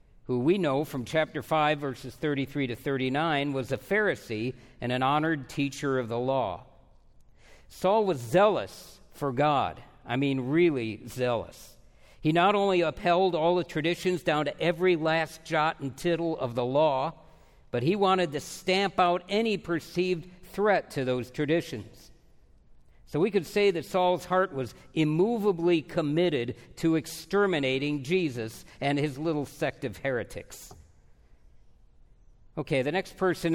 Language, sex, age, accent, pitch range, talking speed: English, male, 50-69, American, 135-185 Hz, 145 wpm